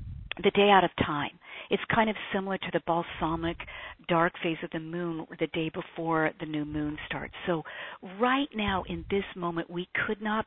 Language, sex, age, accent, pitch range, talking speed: English, female, 50-69, American, 165-200 Hz, 190 wpm